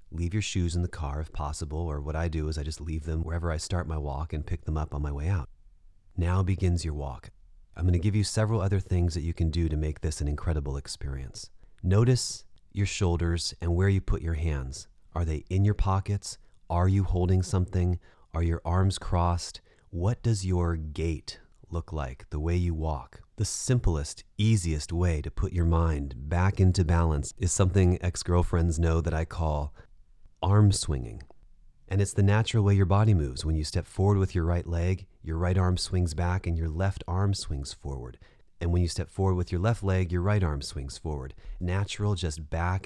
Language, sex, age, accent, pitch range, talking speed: English, male, 30-49, American, 80-95 Hz, 205 wpm